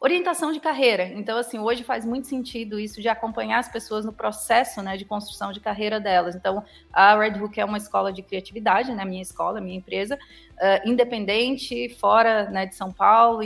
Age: 30-49